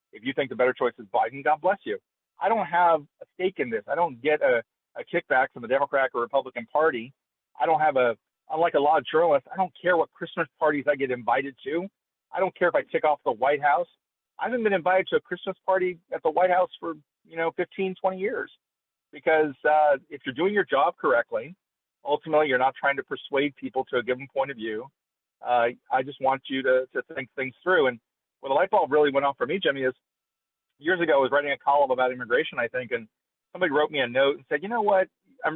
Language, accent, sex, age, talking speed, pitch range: English, American, male, 40-59, 240 wpm, 140-195 Hz